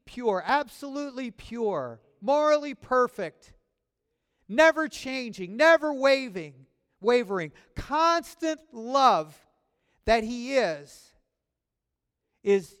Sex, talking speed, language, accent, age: male, 75 wpm, English, American, 50-69